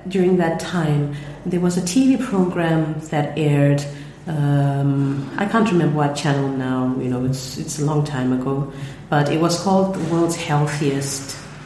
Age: 30-49